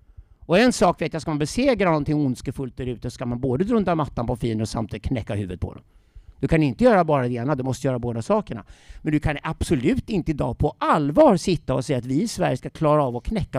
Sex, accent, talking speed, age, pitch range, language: male, native, 250 wpm, 50-69, 125-175 Hz, Swedish